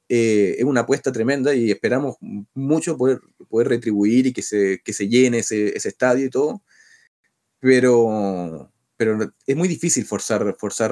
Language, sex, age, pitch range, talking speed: Spanish, male, 30-49, 115-150 Hz, 160 wpm